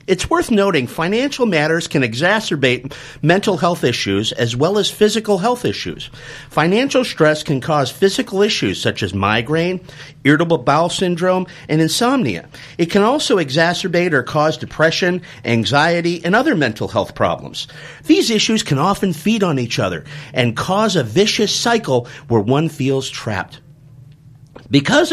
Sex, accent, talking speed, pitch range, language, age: male, American, 145 wpm, 135-210 Hz, English, 50-69